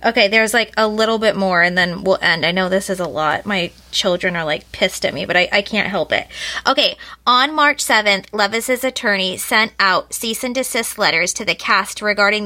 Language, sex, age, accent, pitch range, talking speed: English, female, 20-39, American, 200-250 Hz, 220 wpm